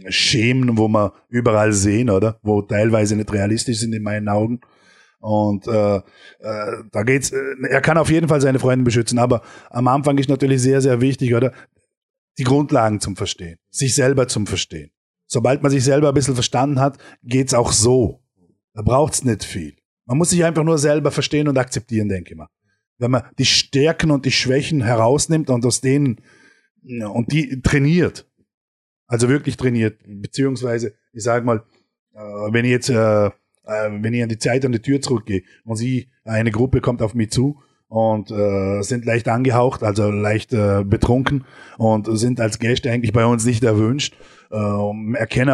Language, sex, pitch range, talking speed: German, male, 110-130 Hz, 170 wpm